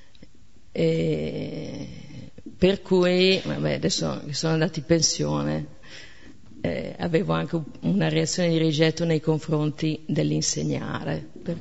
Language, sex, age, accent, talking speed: Italian, female, 50-69, native, 110 wpm